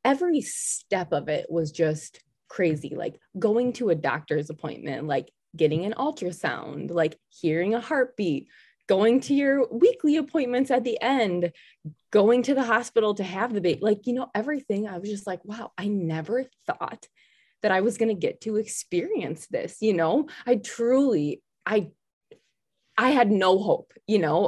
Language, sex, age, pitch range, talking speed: English, female, 20-39, 165-250 Hz, 170 wpm